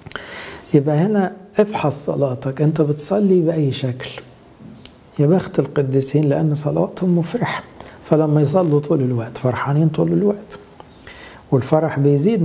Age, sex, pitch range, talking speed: 60-79, male, 125-155 Hz, 100 wpm